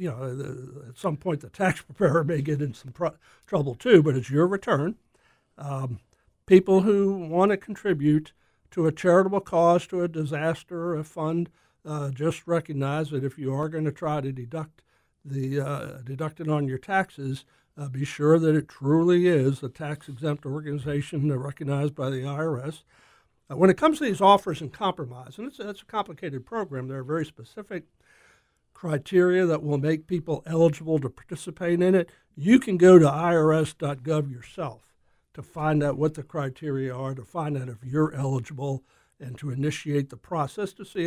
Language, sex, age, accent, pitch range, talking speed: English, male, 60-79, American, 140-175 Hz, 180 wpm